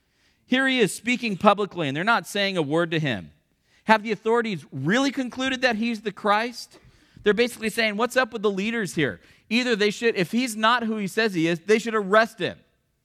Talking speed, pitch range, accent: 210 wpm, 160-215 Hz, American